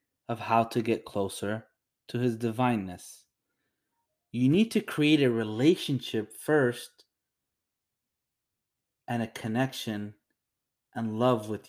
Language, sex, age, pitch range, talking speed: English, male, 30-49, 110-130 Hz, 110 wpm